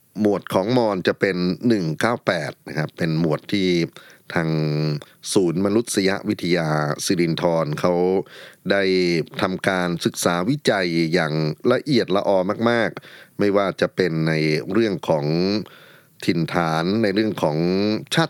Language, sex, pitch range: Thai, male, 80-100 Hz